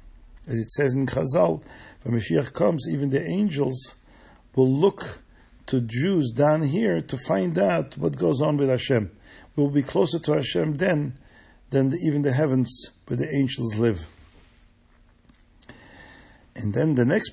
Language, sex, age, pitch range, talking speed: English, male, 50-69, 105-145 Hz, 150 wpm